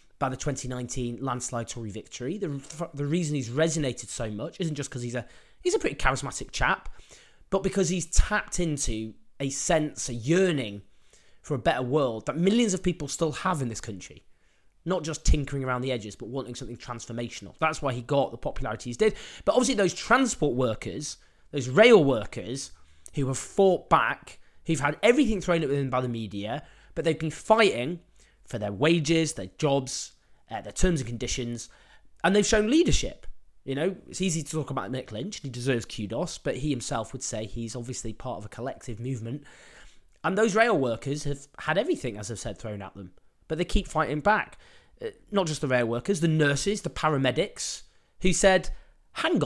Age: 20-39